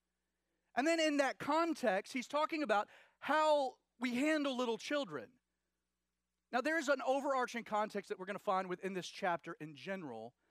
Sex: male